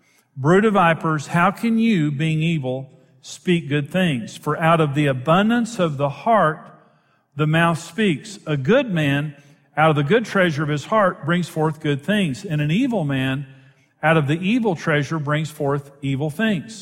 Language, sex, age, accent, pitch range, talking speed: English, male, 50-69, American, 150-195 Hz, 180 wpm